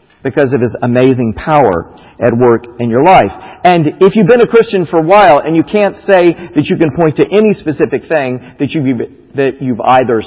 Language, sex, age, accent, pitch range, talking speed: English, male, 40-59, American, 130-170 Hz, 210 wpm